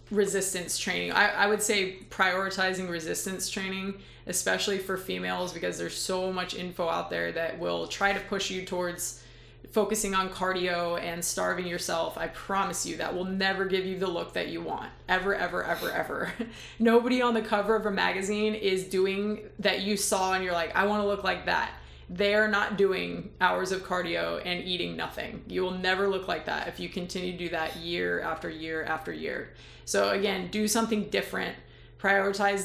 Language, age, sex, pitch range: English, 20-39, female, 175-195 Hz